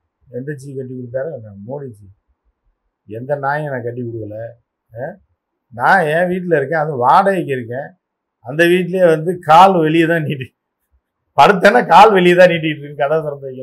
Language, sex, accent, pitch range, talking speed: Tamil, male, native, 125-155 Hz, 130 wpm